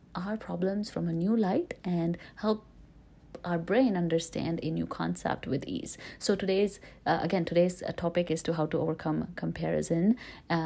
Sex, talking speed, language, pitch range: female, 165 wpm, English, 160-195 Hz